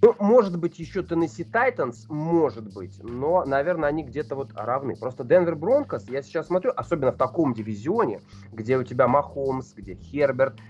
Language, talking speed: Russian, 170 wpm